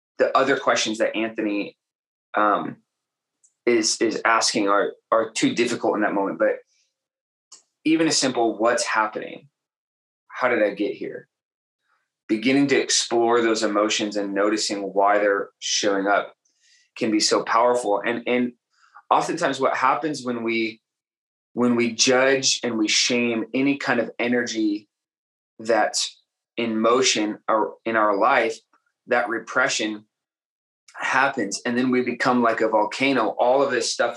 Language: English